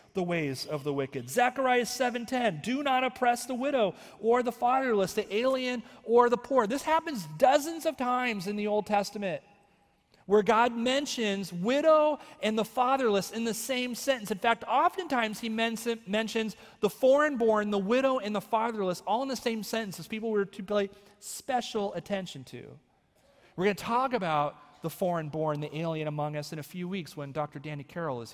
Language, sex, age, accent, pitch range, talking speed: English, male, 40-59, American, 180-250 Hz, 185 wpm